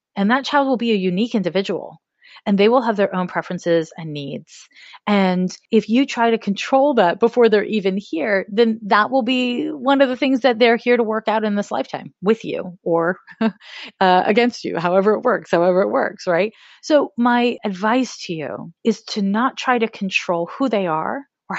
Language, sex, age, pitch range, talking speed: English, female, 30-49, 190-255 Hz, 205 wpm